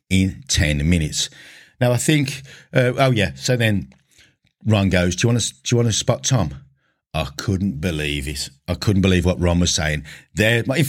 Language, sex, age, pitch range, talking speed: English, male, 50-69, 80-105 Hz, 200 wpm